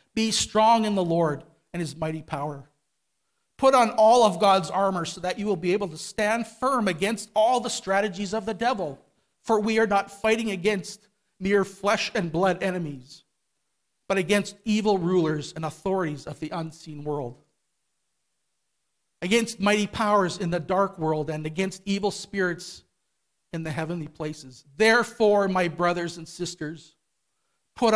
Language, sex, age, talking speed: English, male, 40-59, 155 wpm